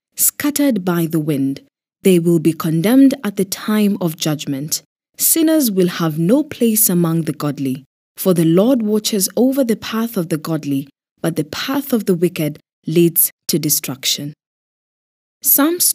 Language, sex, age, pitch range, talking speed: English, female, 20-39, 155-220 Hz, 155 wpm